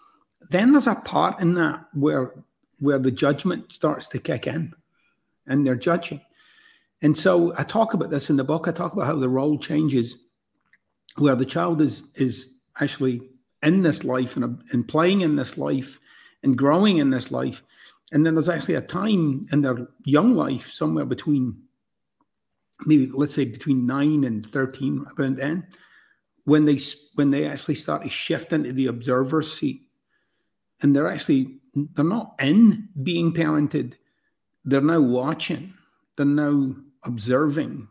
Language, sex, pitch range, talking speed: English, male, 135-160 Hz, 160 wpm